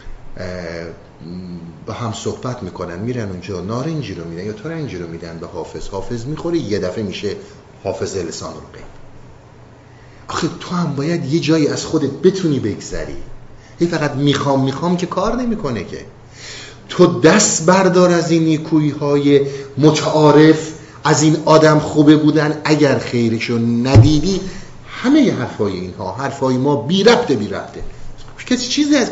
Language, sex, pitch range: Persian, male, 120-165 Hz